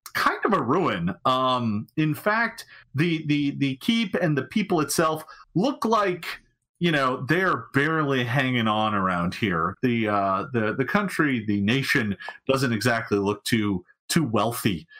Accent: American